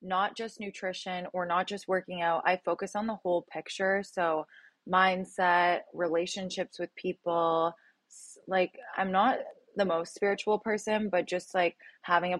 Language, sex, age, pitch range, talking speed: English, female, 20-39, 170-200 Hz, 150 wpm